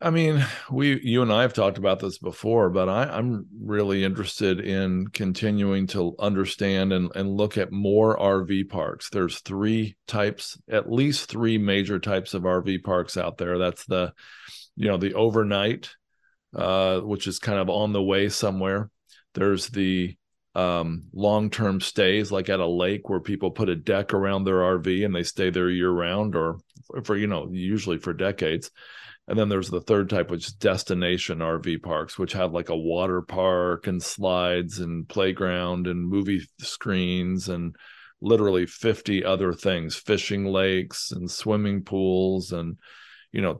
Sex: male